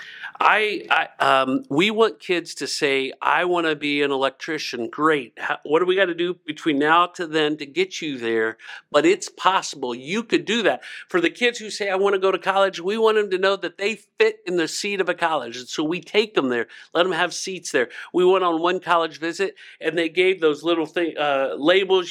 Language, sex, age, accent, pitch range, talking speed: English, male, 50-69, American, 150-190 Hz, 235 wpm